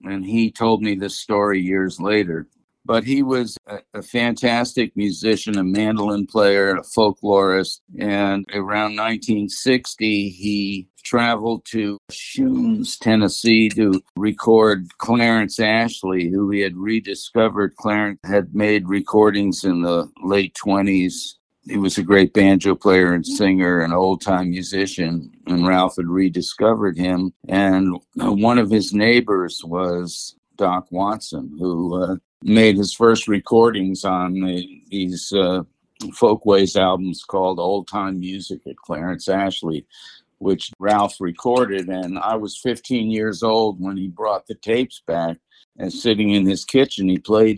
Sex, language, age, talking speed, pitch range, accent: male, English, 50-69, 135 wpm, 95-110 Hz, American